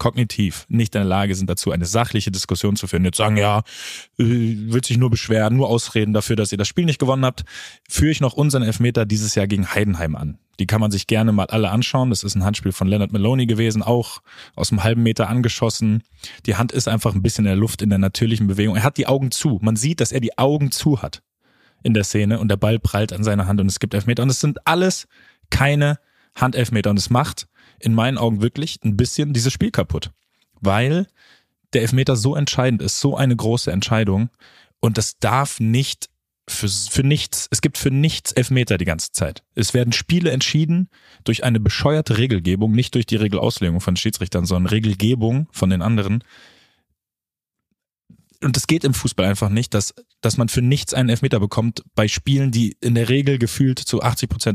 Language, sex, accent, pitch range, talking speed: German, male, German, 100-125 Hz, 205 wpm